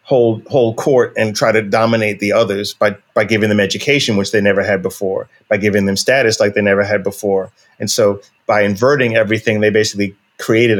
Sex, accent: male, American